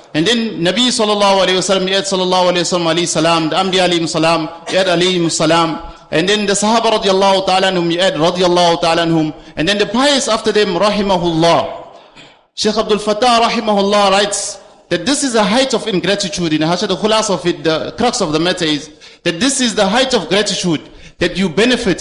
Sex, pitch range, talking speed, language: male, 170-215 Hz, 205 wpm, English